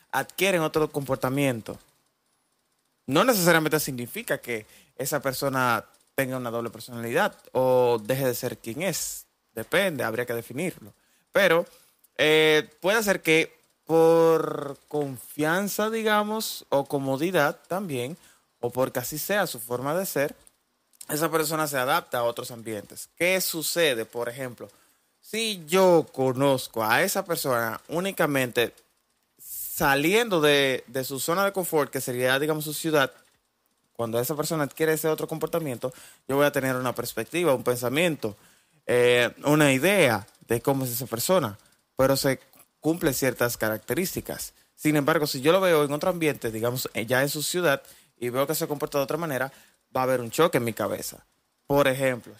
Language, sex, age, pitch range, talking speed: Spanish, male, 20-39, 125-160 Hz, 150 wpm